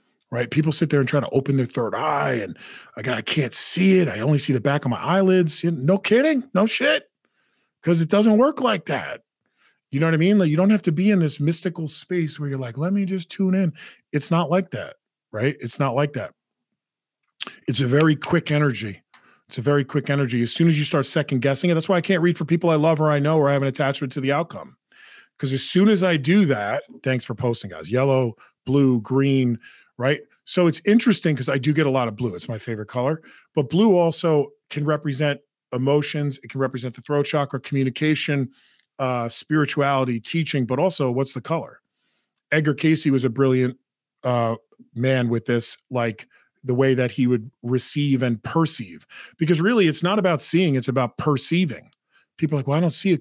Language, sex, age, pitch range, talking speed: English, male, 40-59, 130-170 Hz, 215 wpm